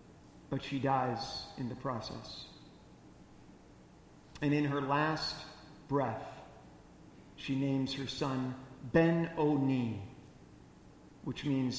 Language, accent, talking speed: English, American, 95 wpm